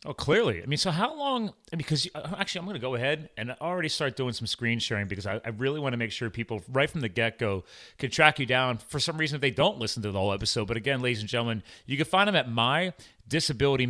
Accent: American